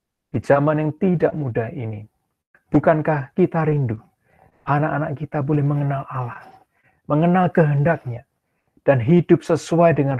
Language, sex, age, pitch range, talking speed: Indonesian, male, 40-59, 130-165 Hz, 120 wpm